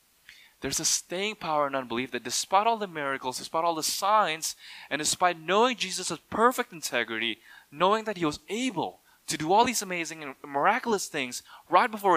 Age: 20-39